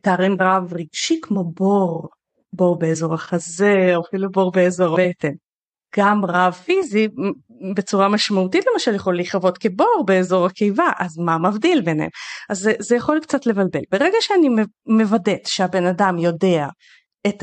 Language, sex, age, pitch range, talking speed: Hebrew, female, 30-49, 180-240 Hz, 140 wpm